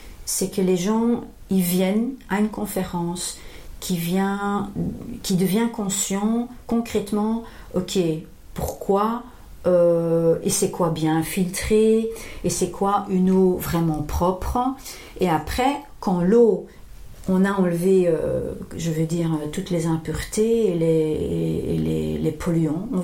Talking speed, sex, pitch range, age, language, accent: 135 wpm, female, 175-215 Hz, 50-69, French, French